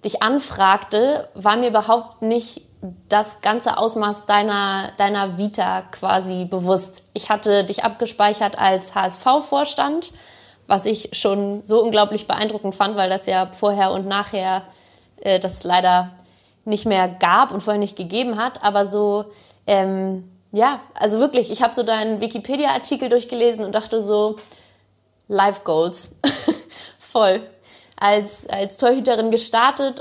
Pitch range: 190-220 Hz